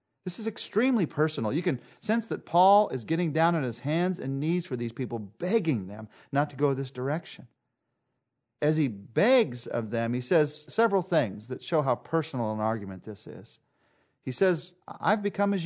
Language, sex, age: English, male, 40-59